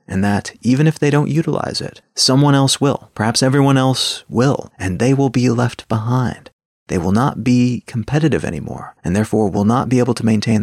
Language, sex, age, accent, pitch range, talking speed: English, male, 30-49, American, 110-135 Hz, 200 wpm